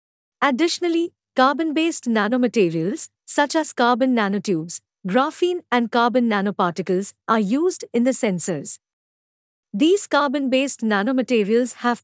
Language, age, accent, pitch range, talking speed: English, 50-69, Indian, 200-270 Hz, 100 wpm